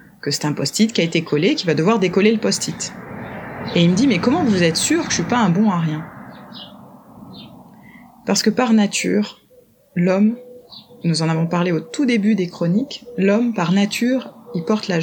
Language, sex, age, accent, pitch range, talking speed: French, female, 20-39, French, 170-225 Hz, 210 wpm